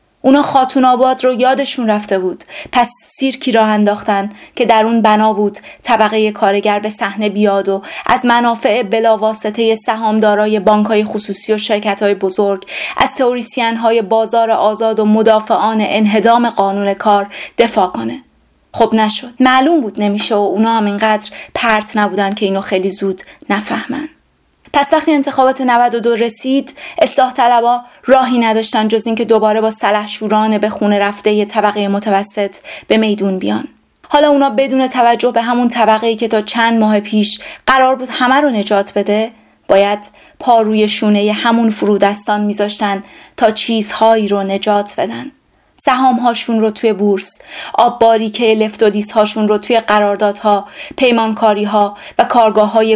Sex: female